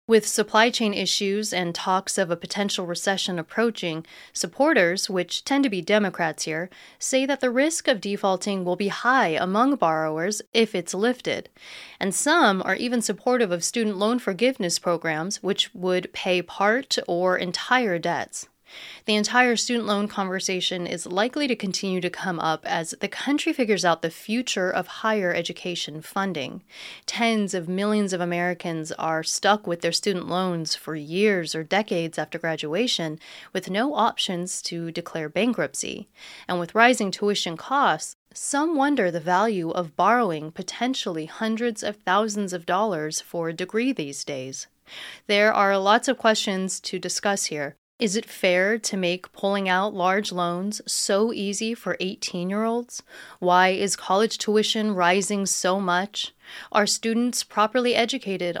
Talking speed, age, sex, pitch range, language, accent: 155 wpm, 30-49, female, 175-220 Hz, English, American